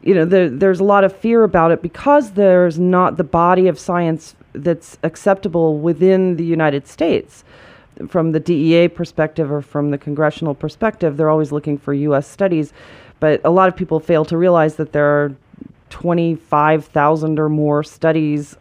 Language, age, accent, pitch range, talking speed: English, 40-59, American, 145-175 Hz, 170 wpm